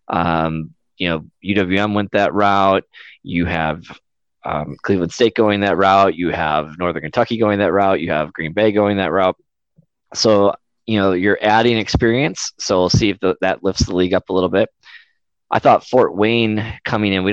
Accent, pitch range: American, 90-110 Hz